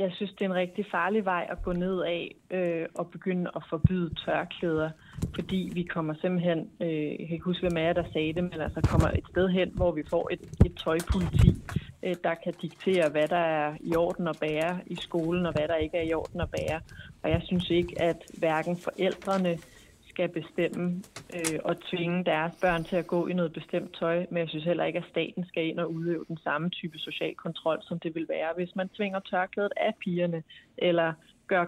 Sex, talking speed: female, 215 wpm